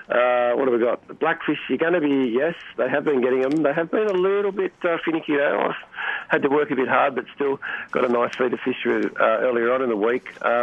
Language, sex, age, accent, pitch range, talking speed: English, male, 40-59, Australian, 115-145 Hz, 270 wpm